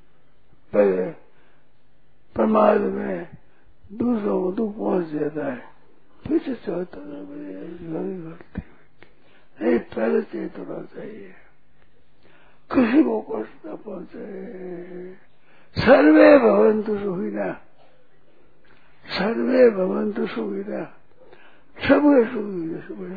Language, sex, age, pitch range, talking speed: Hindi, male, 60-79, 185-245 Hz, 60 wpm